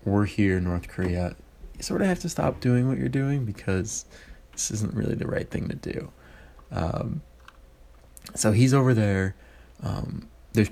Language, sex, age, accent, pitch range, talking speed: English, male, 20-39, American, 75-105 Hz, 175 wpm